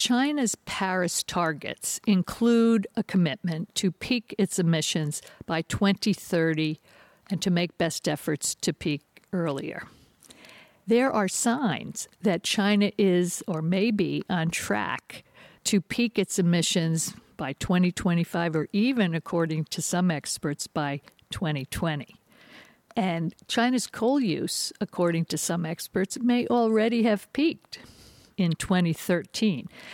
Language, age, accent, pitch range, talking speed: English, 60-79, American, 165-205 Hz, 120 wpm